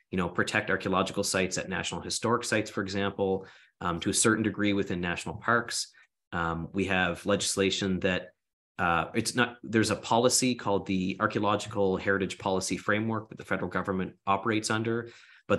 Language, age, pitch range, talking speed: English, 30-49, 95-110 Hz, 165 wpm